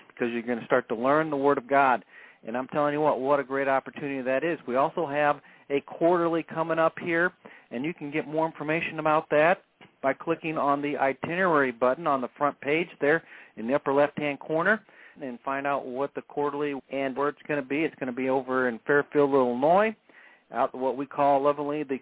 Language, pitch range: English, 130-160 Hz